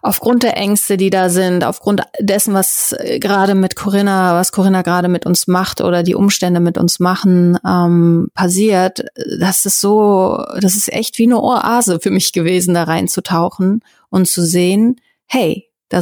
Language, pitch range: German, 175-200 Hz